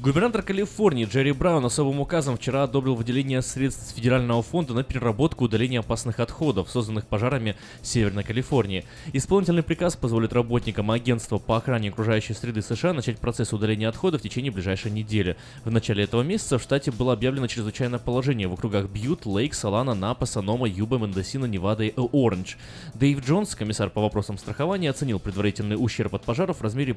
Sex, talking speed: male, 165 wpm